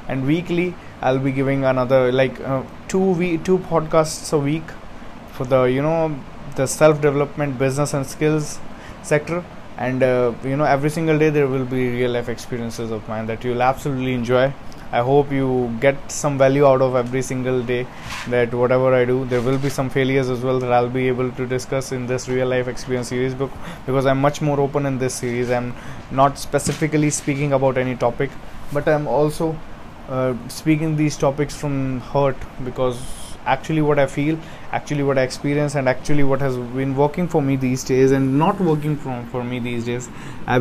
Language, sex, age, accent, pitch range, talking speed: English, male, 20-39, Indian, 125-150 Hz, 195 wpm